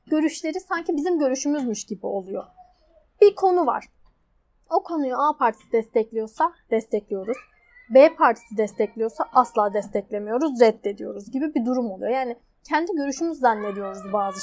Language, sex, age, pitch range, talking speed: Turkish, female, 10-29, 235-315 Hz, 125 wpm